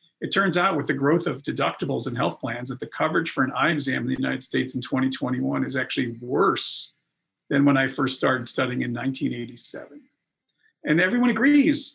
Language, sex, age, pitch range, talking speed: English, male, 50-69, 135-170 Hz, 190 wpm